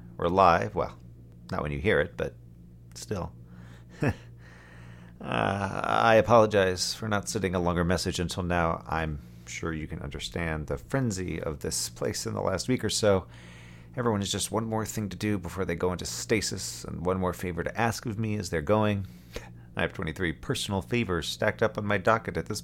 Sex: male